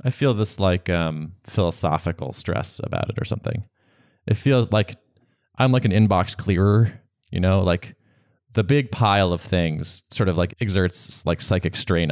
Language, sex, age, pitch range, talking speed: English, male, 20-39, 90-125 Hz, 170 wpm